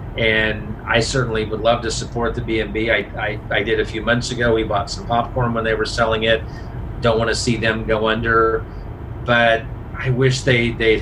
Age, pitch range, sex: 40-59, 110-125 Hz, male